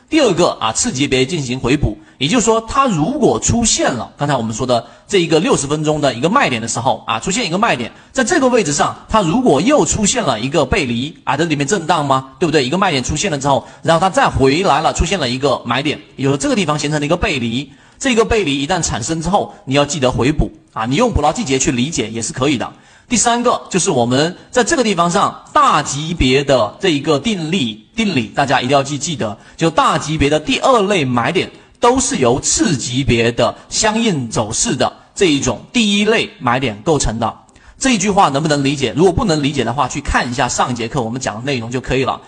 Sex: male